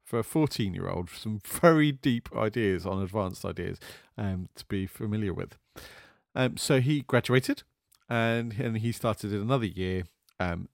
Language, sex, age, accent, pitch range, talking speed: English, male, 40-59, British, 95-130 Hz, 150 wpm